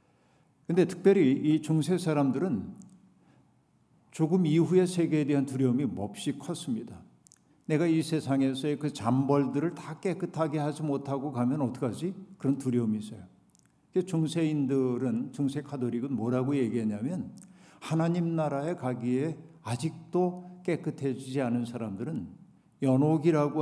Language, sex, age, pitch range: Korean, male, 50-69, 125-165 Hz